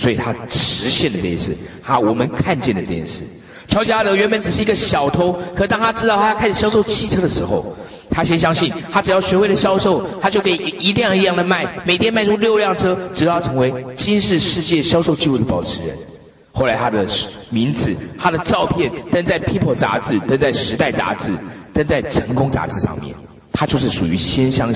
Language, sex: Chinese, male